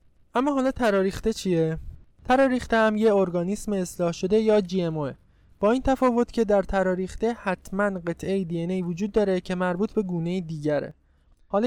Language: Persian